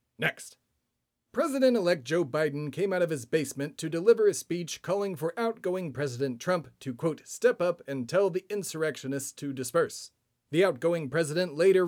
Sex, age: male, 40-59